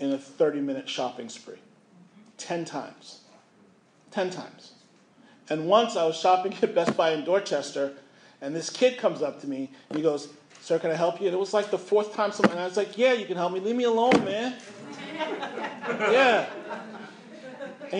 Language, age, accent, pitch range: English, 40-59, American, 165-210 Hz